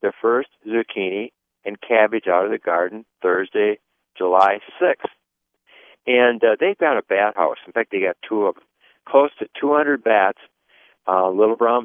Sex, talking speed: male, 165 wpm